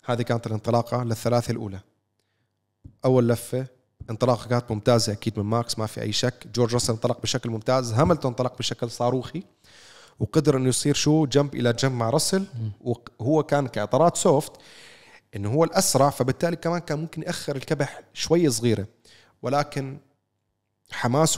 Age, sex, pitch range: 30-49, male, 115-150 Hz